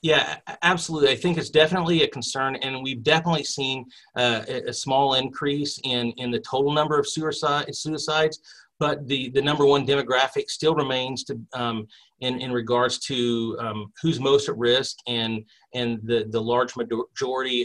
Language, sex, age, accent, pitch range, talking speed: English, male, 40-59, American, 125-160 Hz, 170 wpm